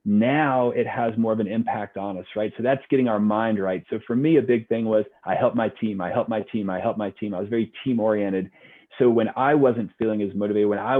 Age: 30-49